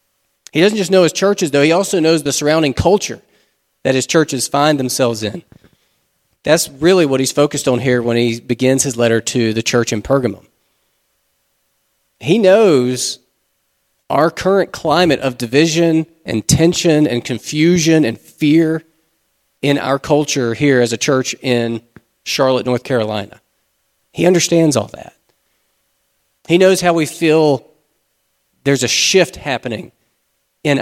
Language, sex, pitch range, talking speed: English, male, 125-165 Hz, 145 wpm